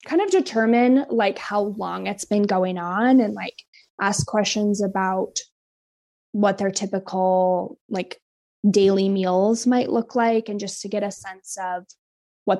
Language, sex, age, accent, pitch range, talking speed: English, female, 20-39, American, 190-245 Hz, 150 wpm